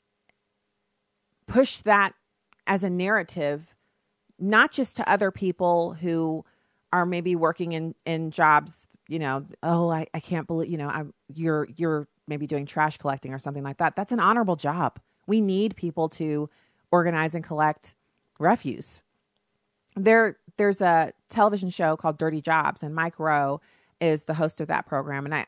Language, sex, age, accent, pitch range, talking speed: English, female, 40-59, American, 145-180 Hz, 160 wpm